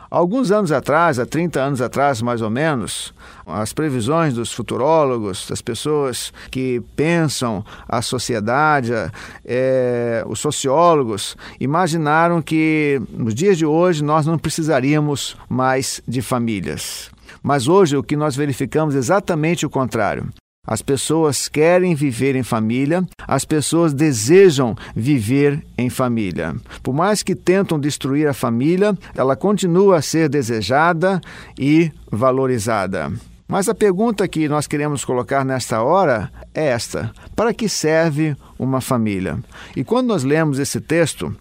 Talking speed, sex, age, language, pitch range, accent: 135 wpm, male, 50-69, Portuguese, 125-165 Hz, Brazilian